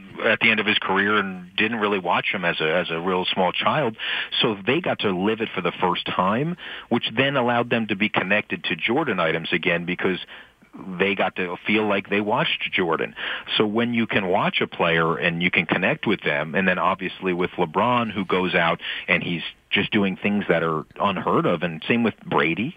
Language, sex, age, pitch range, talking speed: English, male, 40-59, 90-110 Hz, 215 wpm